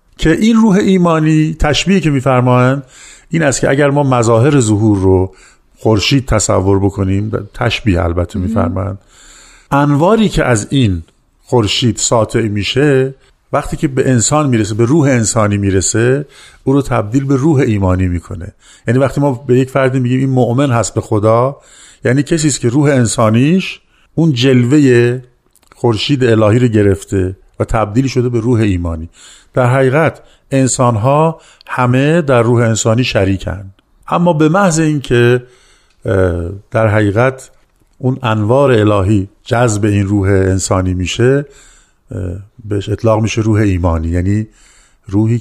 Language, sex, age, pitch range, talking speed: Persian, male, 50-69, 100-135 Hz, 135 wpm